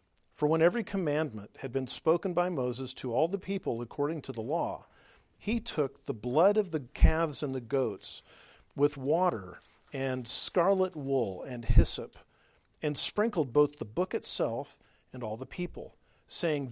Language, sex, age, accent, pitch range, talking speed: English, male, 50-69, American, 125-165 Hz, 160 wpm